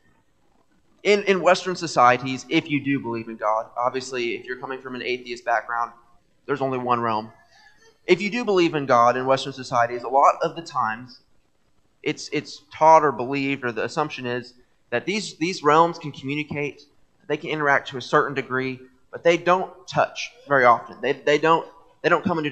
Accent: American